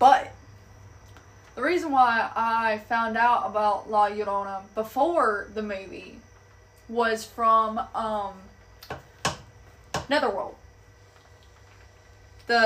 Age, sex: 20-39, female